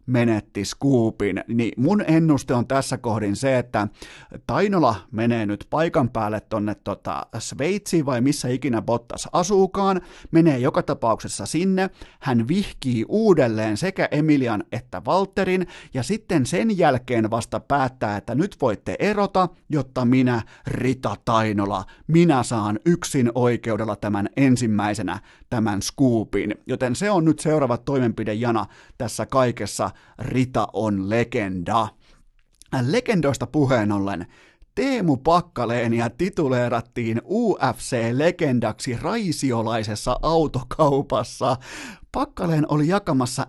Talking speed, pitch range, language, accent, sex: 110 wpm, 110-145 Hz, Finnish, native, male